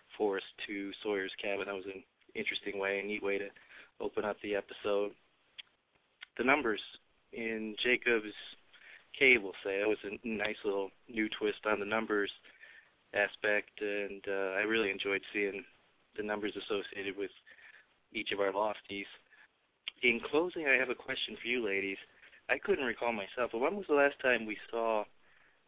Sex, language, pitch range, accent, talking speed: male, English, 100-120 Hz, American, 165 wpm